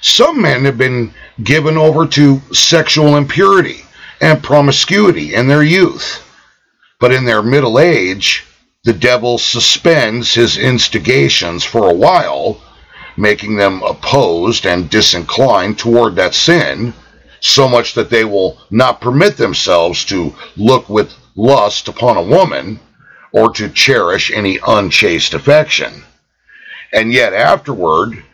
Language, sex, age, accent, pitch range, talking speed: English, male, 50-69, American, 105-150 Hz, 125 wpm